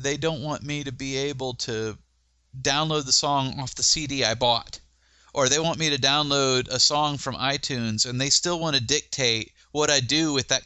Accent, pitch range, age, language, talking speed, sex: American, 105-135 Hz, 30-49, English, 210 wpm, male